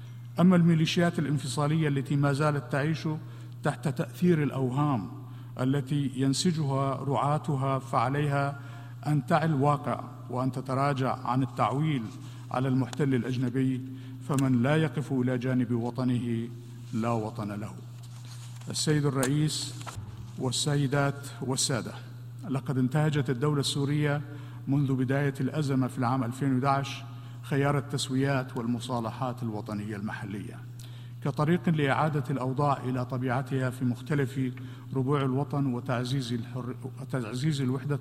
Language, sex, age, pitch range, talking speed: Arabic, male, 50-69, 120-145 Hz, 100 wpm